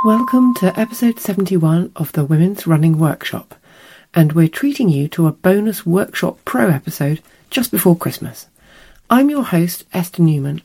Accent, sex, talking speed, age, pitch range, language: British, female, 150 wpm, 40-59, 150-185 Hz, English